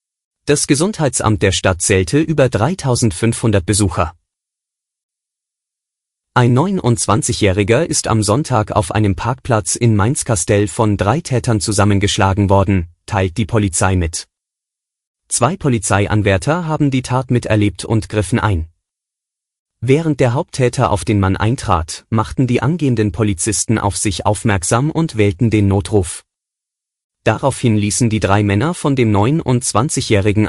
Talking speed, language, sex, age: 120 wpm, German, male, 30-49